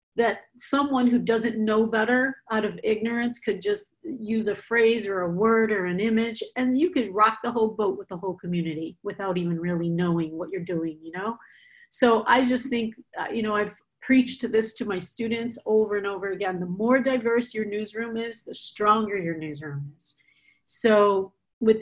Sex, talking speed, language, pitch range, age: female, 190 wpm, English, 195-230 Hz, 40-59